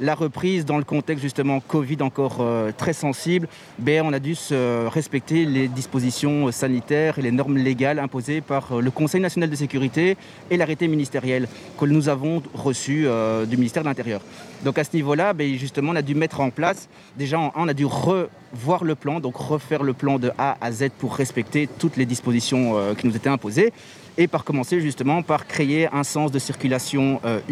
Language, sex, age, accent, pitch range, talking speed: French, male, 30-49, French, 130-155 Hz, 200 wpm